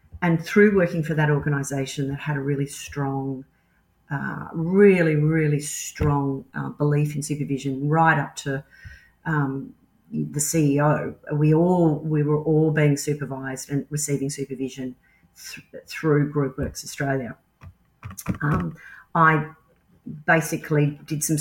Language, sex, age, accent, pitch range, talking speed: English, female, 40-59, Australian, 145-170 Hz, 125 wpm